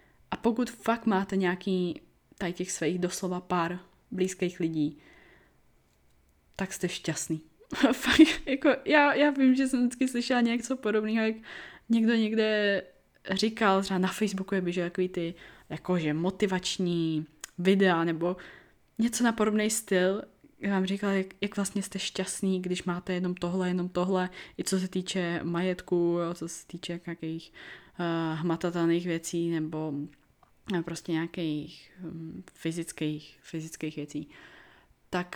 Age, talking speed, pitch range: 20-39, 135 wpm, 170-205 Hz